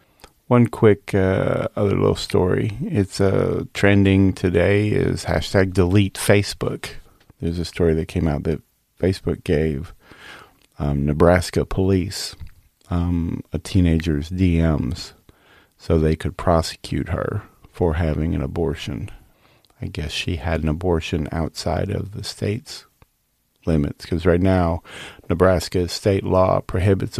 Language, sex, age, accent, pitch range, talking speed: English, male, 40-59, American, 85-105 Hz, 125 wpm